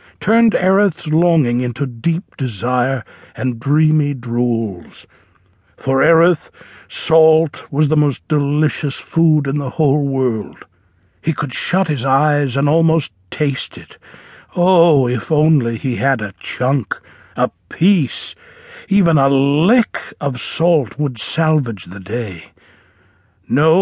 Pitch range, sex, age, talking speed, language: 115-165 Hz, male, 60-79, 125 wpm, English